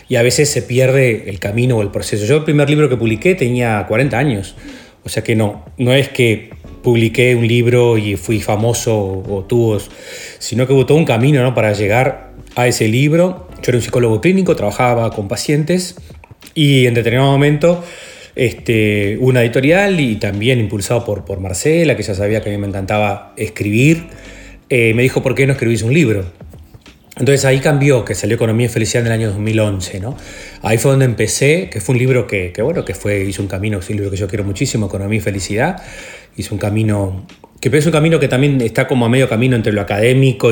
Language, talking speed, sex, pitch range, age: Spanish, 215 wpm, male, 105-130 Hz, 30-49